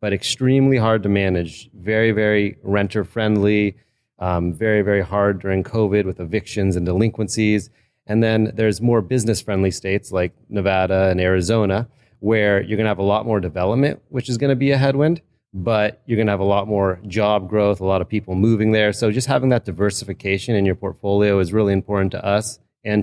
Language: English